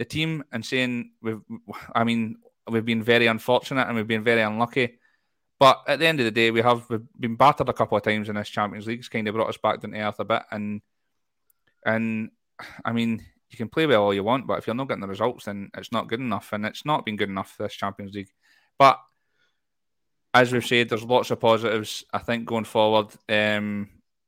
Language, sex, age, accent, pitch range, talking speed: English, male, 20-39, British, 105-120 Hz, 230 wpm